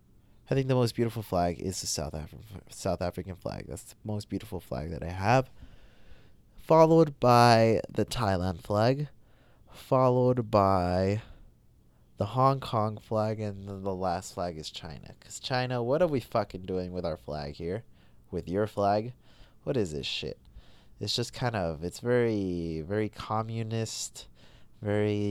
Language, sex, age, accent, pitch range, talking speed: English, male, 20-39, American, 95-135 Hz, 155 wpm